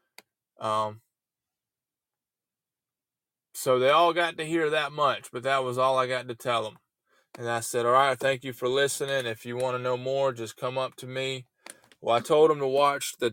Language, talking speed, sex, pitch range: English, 205 wpm, male, 115-130 Hz